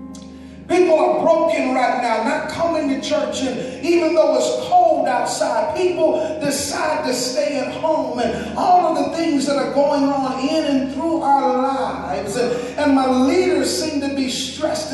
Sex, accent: male, American